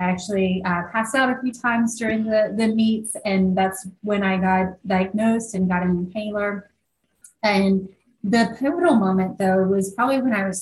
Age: 30-49